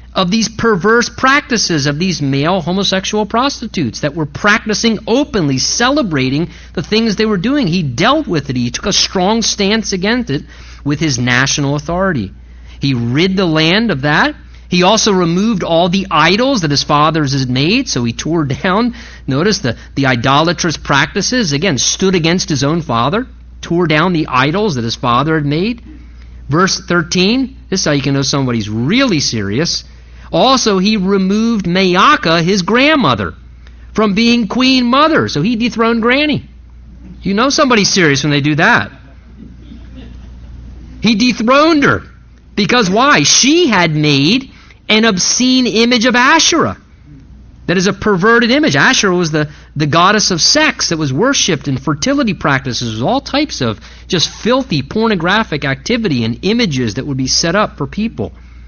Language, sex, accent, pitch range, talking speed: English, male, American, 140-225 Hz, 160 wpm